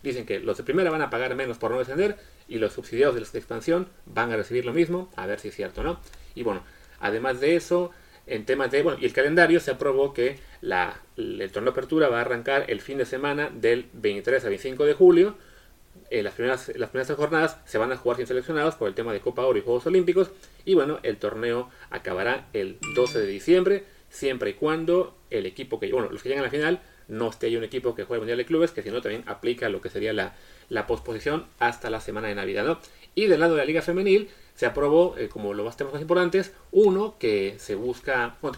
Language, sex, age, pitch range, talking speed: Spanish, male, 30-49, 125-200 Hz, 240 wpm